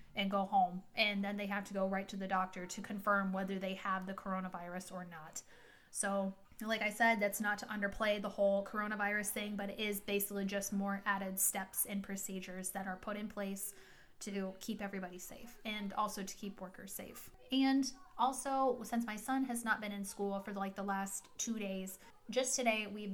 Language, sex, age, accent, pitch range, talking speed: English, female, 20-39, American, 195-215 Hz, 200 wpm